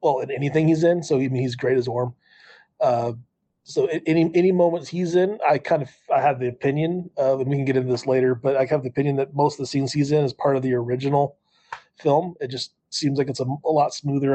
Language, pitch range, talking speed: English, 125-145 Hz, 255 wpm